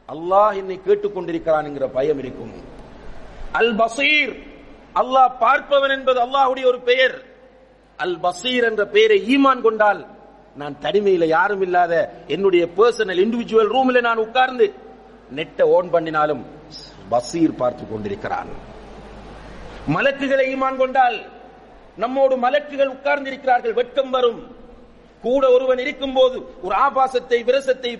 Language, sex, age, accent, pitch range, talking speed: English, male, 50-69, Indian, 225-270 Hz, 140 wpm